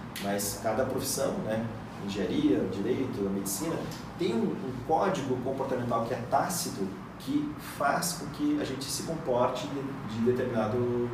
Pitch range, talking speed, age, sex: 110-145 Hz, 135 wpm, 30-49, male